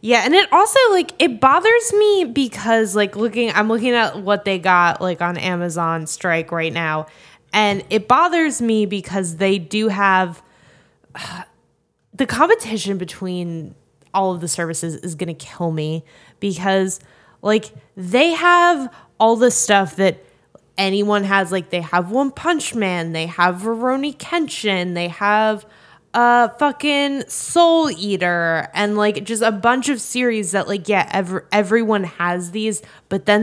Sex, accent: female, American